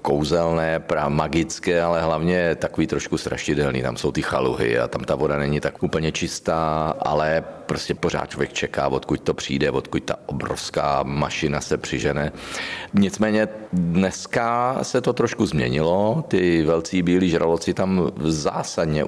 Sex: male